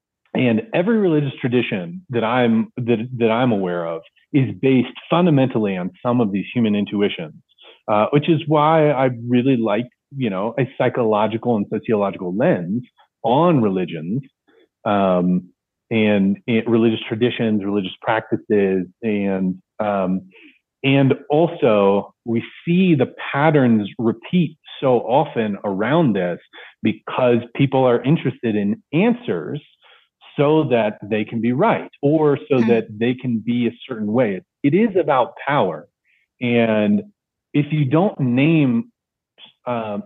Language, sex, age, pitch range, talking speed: English, male, 30-49, 110-140 Hz, 130 wpm